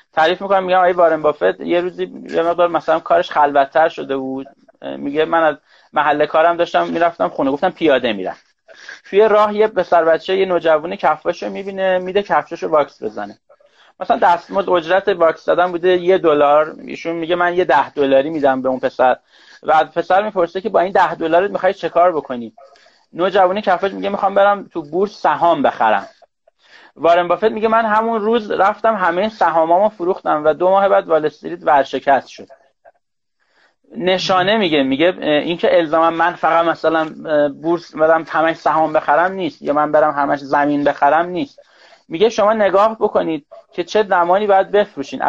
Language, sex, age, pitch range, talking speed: Persian, male, 30-49, 155-190 Hz, 165 wpm